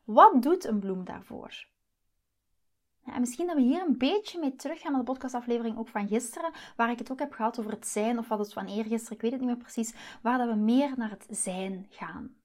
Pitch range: 220-260 Hz